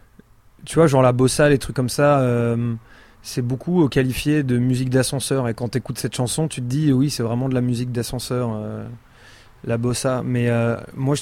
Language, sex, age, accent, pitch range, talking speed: French, male, 20-39, French, 120-140 Hz, 205 wpm